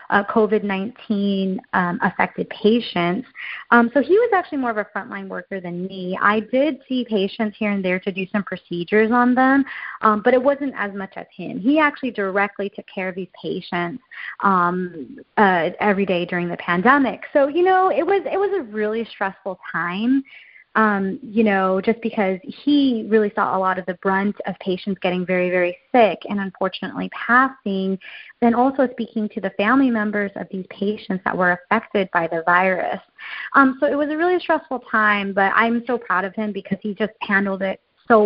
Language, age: English, 30-49